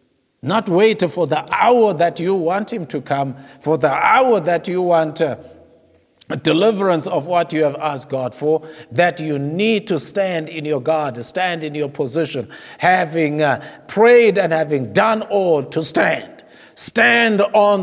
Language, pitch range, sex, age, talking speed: English, 155-225 Hz, male, 50-69, 160 wpm